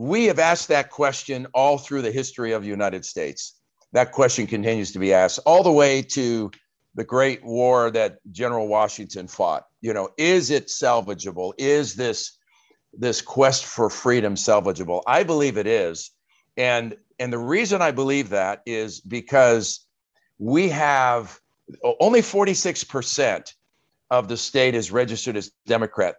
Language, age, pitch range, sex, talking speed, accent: English, 50-69, 115-145 Hz, male, 150 wpm, American